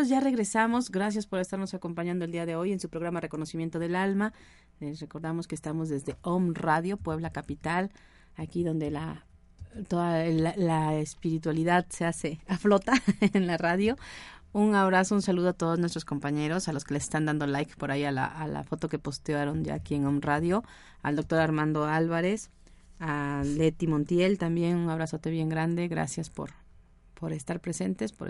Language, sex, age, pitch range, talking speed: Spanish, female, 30-49, 155-190 Hz, 180 wpm